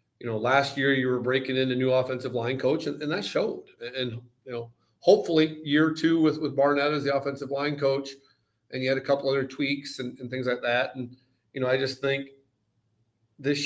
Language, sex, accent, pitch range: English, male, American, 120-145 Hz